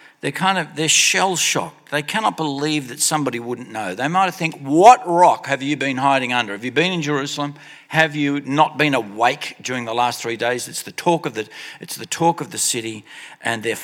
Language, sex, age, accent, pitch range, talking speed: English, male, 50-69, Australian, 125-160 Hz, 215 wpm